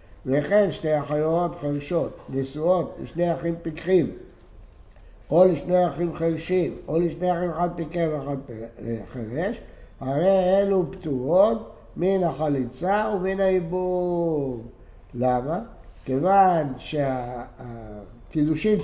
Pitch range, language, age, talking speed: 130-185 Hz, Hebrew, 60-79, 95 wpm